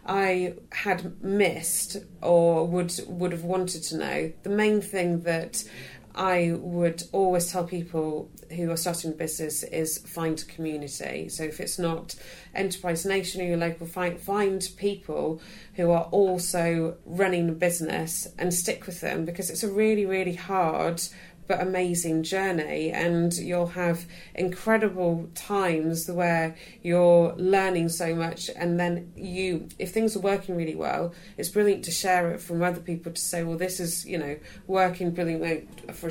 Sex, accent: female, British